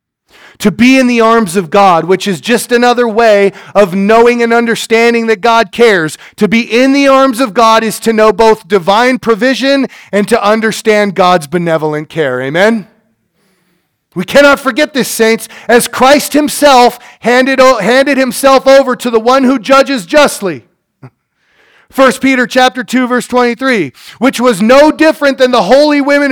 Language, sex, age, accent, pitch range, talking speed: English, male, 40-59, American, 205-265 Hz, 160 wpm